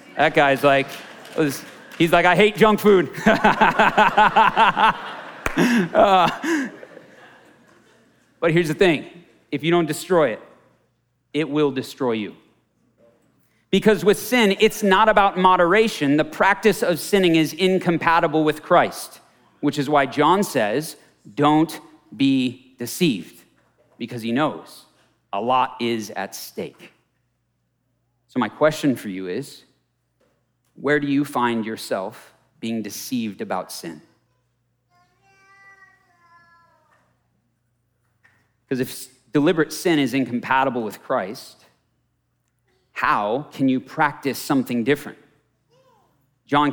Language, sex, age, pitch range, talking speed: English, male, 40-59, 125-175 Hz, 110 wpm